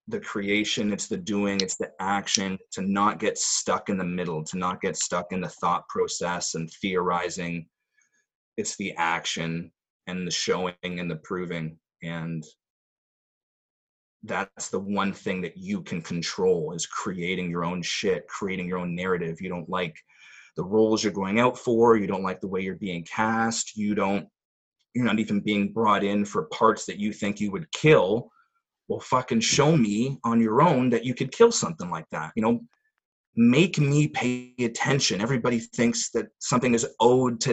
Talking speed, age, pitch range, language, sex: 180 wpm, 30-49, 95-120 Hz, English, male